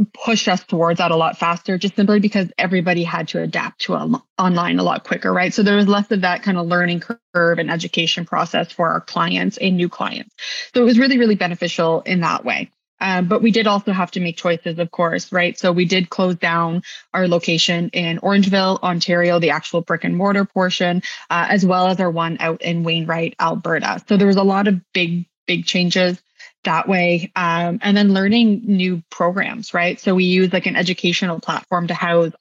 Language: English